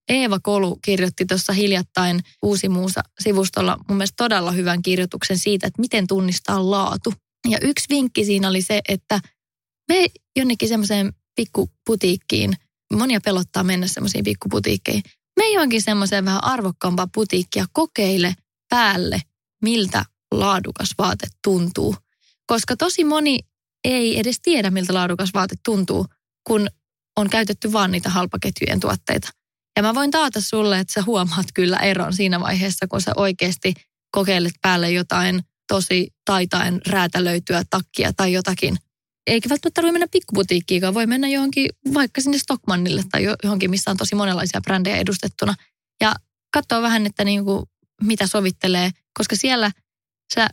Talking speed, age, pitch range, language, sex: 140 wpm, 20-39, 185-225 Hz, English, female